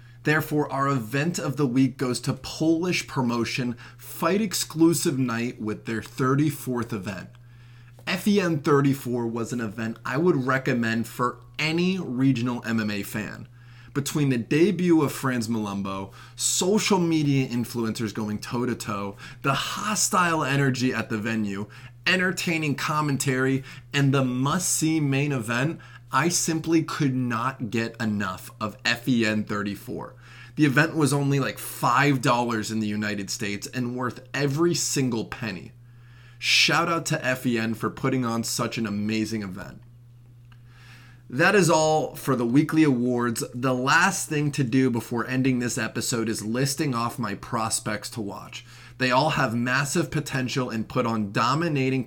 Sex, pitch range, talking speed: male, 120-145 Hz, 140 wpm